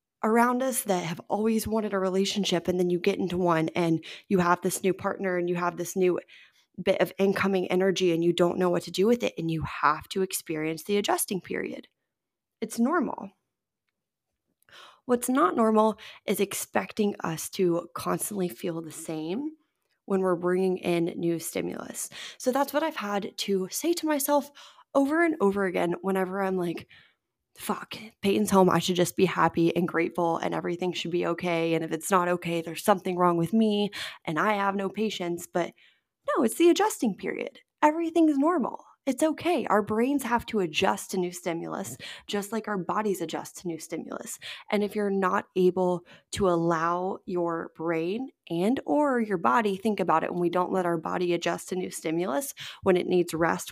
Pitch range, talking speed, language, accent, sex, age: 175-215 Hz, 185 wpm, English, American, female, 20-39